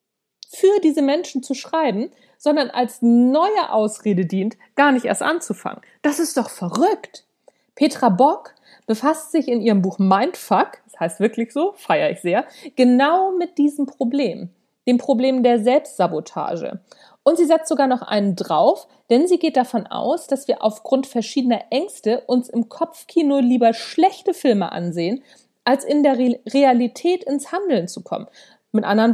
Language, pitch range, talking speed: German, 220-290 Hz, 155 wpm